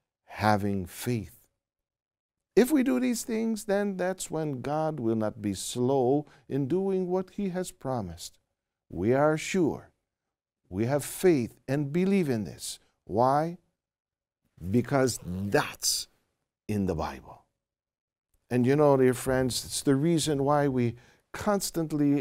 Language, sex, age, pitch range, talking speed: Filipino, male, 50-69, 115-175 Hz, 130 wpm